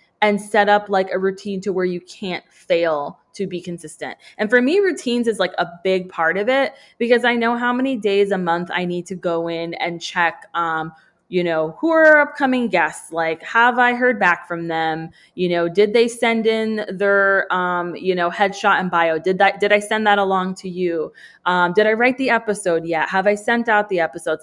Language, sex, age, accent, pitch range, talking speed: English, female, 20-39, American, 180-230 Hz, 220 wpm